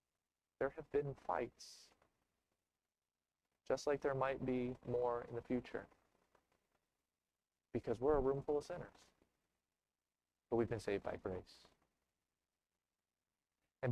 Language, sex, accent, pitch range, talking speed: English, male, American, 120-155 Hz, 115 wpm